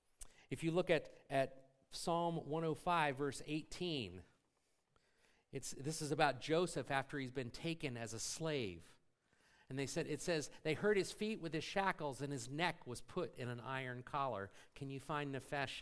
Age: 50-69